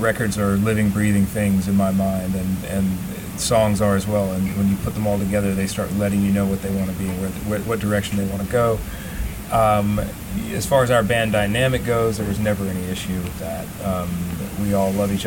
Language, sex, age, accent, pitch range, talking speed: English, male, 30-49, American, 95-105 Hz, 230 wpm